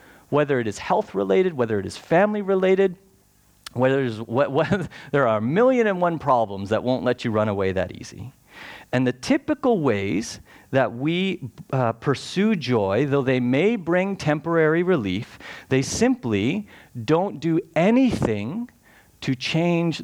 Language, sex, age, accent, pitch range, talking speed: English, male, 40-59, American, 125-190 Hz, 140 wpm